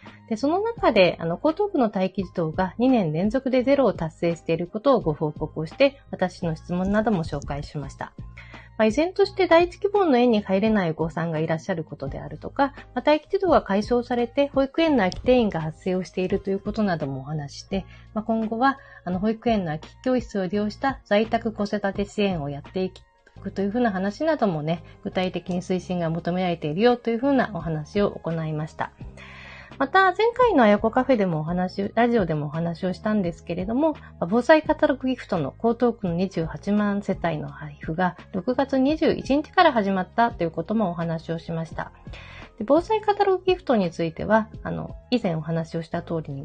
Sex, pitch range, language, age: female, 165-250 Hz, Japanese, 40-59